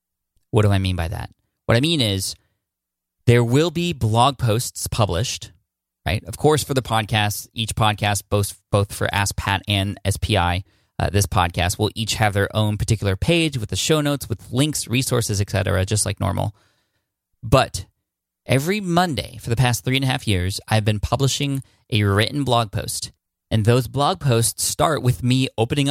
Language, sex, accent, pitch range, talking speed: English, male, American, 100-120 Hz, 180 wpm